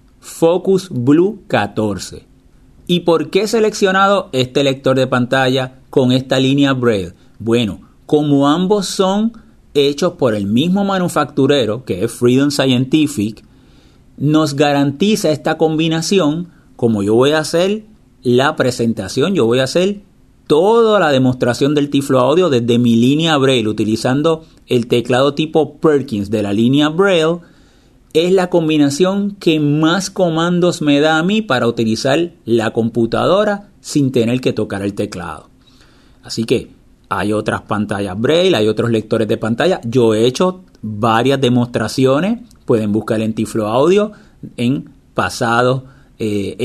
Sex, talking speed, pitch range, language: male, 140 wpm, 115-160 Hz, Spanish